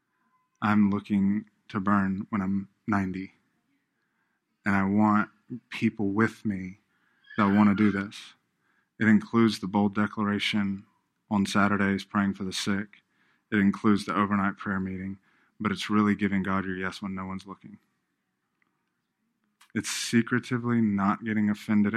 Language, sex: English, male